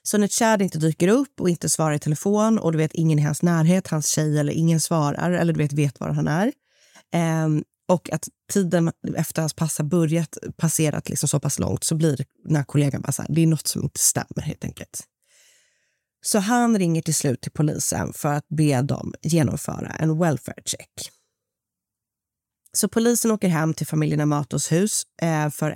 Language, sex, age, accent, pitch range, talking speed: Swedish, female, 30-49, native, 150-190 Hz, 195 wpm